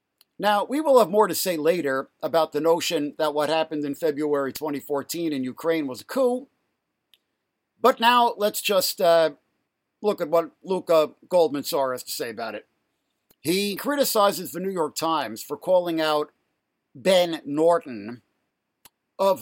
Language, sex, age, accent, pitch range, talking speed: English, male, 60-79, American, 155-220 Hz, 150 wpm